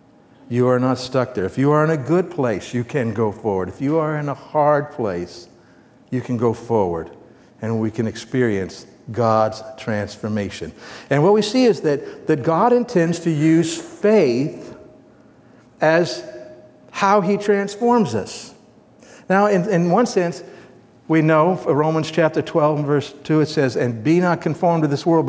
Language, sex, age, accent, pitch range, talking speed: English, male, 60-79, American, 130-175 Hz, 170 wpm